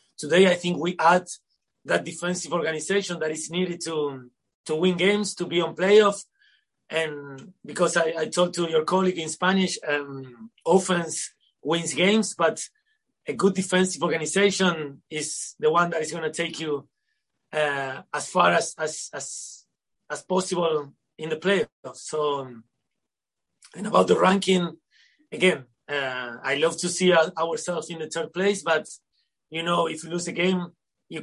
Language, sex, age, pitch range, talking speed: English, male, 30-49, 155-190 Hz, 160 wpm